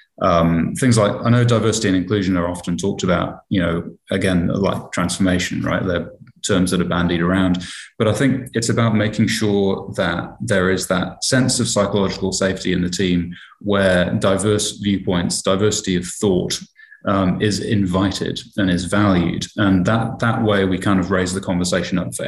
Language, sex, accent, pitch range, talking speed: English, male, British, 95-110 Hz, 180 wpm